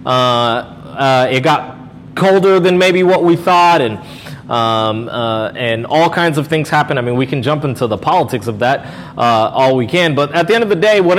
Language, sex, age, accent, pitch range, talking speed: English, male, 30-49, American, 125-170 Hz, 220 wpm